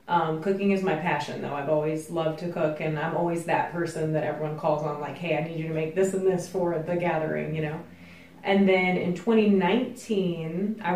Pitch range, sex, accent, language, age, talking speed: 160-190 Hz, female, American, English, 20-39, 220 wpm